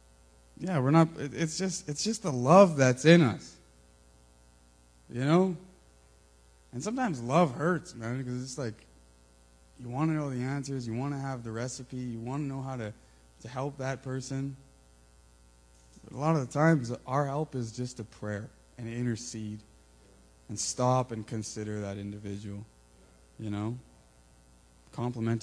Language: English